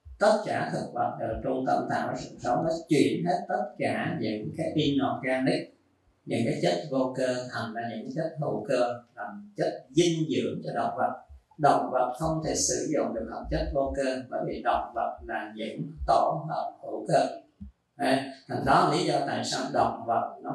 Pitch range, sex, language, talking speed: 115-155 Hz, male, Vietnamese, 200 wpm